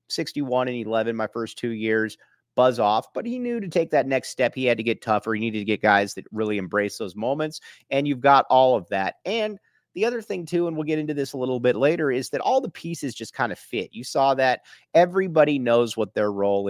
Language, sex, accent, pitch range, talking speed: English, male, American, 115-140 Hz, 250 wpm